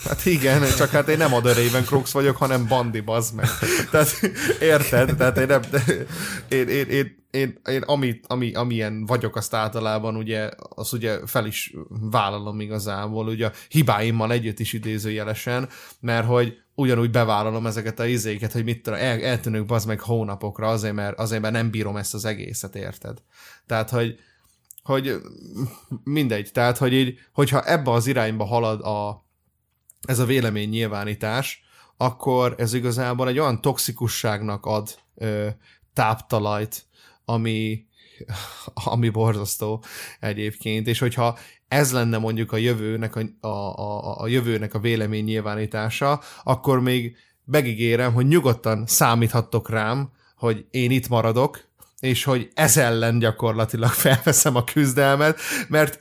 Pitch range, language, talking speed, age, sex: 110-130 Hz, Hungarian, 135 wpm, 20-39, male